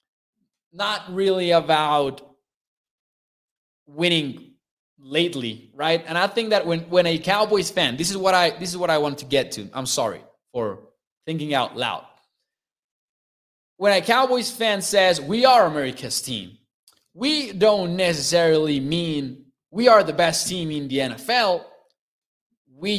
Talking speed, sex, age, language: 145 wpm, male, 20-39, English